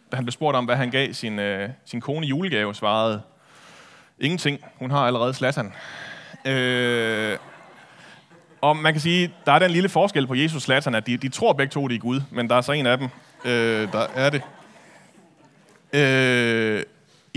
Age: 30-49